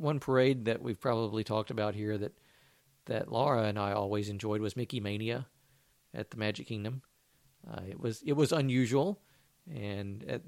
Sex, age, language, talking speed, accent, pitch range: male, 50-69, English, 170 wpm, American, 105-140 Hz